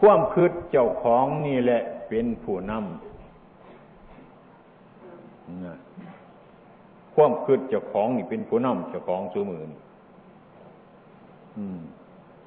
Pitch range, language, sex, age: 125-200 Hz, Thai, male, 60-79